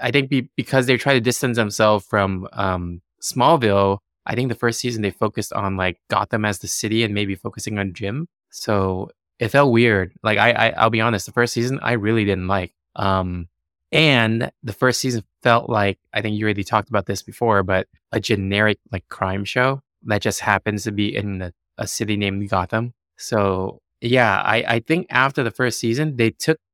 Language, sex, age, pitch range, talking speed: English, male, 20-39, 100-125 Hz, 195 wpm